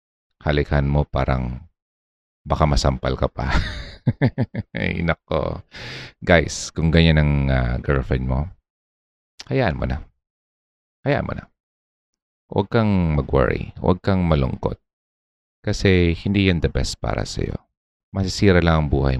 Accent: native